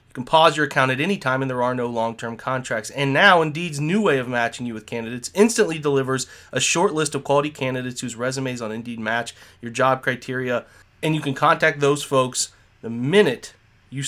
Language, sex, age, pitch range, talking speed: English, male, 30-49, 120-150 Hz, 210 wpm